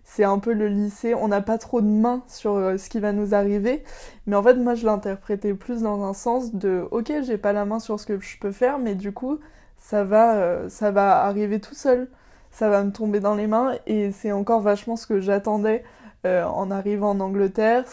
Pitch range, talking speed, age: 200-225 Hz, 245 wpm, 20-39